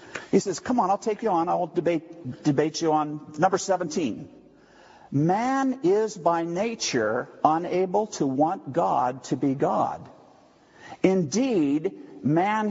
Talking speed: 130 wpm